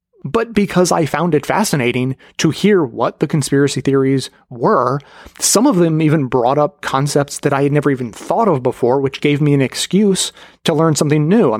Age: 30-49